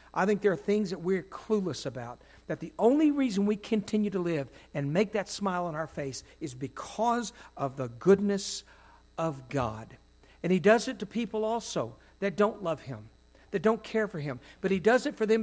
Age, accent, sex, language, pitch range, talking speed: 60-79, American, male, English, 125-210 Hz, 205 wpm